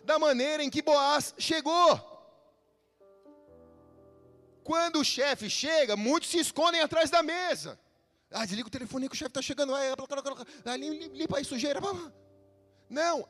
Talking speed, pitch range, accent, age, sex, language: 135 wpm, 230-300 Hz, Brazilian, 30-49, male, Portuguese